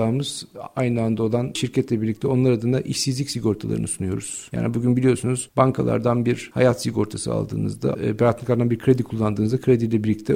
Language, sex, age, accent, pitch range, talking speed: Turkish, male, 50-69, native, 110-130 Hz, 150 wpm